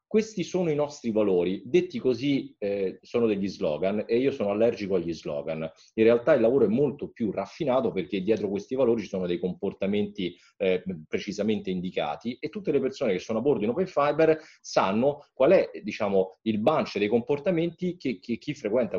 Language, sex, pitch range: Italian, male, 95-150 Hz